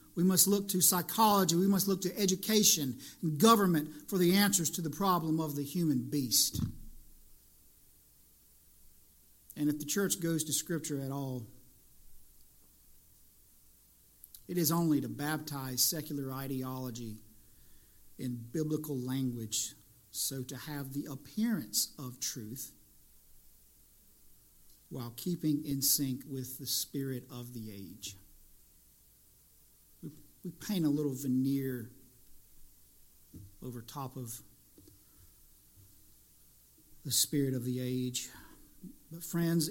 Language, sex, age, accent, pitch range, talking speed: English, male, 50-69, American, 115-165 Hz, 110 wpm